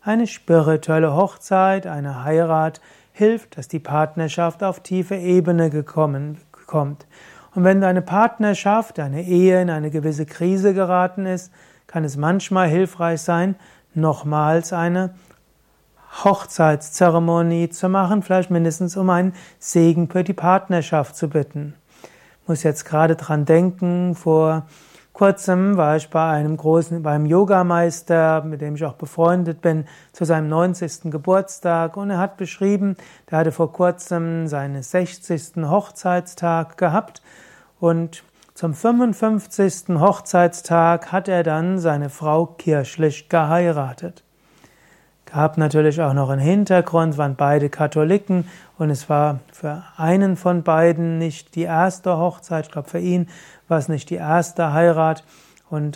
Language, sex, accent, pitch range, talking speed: German, male, German, 155-180 Hz, 135 wpm